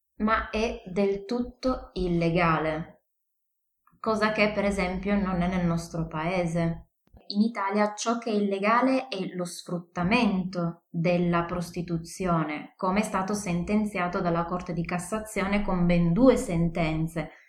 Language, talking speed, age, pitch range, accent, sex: Italian, 125 wpm, 20-39, 175-215 Hz, native, female